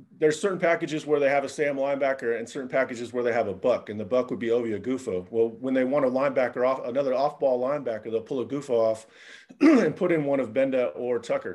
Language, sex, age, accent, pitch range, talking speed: English, male, 30-49, American, 115-155 Hz, 245 wpm